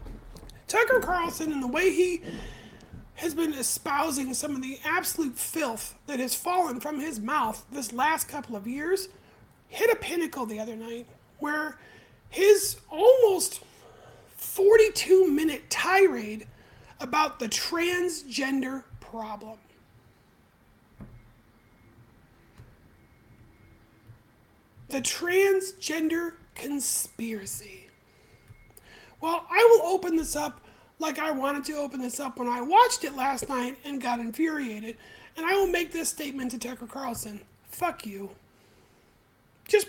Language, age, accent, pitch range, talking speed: English, 30-49, American, 250-350 Hz, 115 wpm